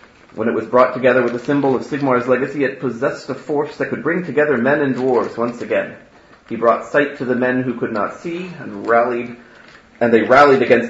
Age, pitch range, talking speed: 30-49, 110-135 Hz, 220 wpm